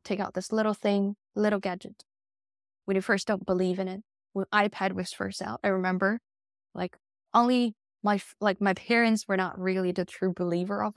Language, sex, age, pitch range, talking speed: English, female, 10-29, 175-205 Hz, 185 wpm